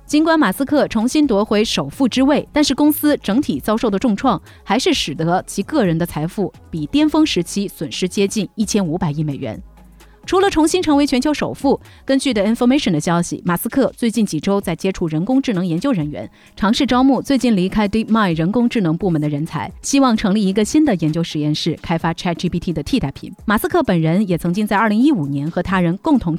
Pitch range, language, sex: 170-265 Hz, Chinese, female